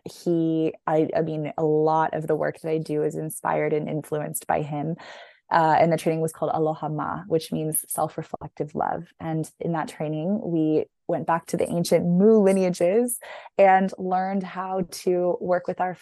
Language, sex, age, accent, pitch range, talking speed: English, female, 20-39, American, 155-185 Hz, 185 wpm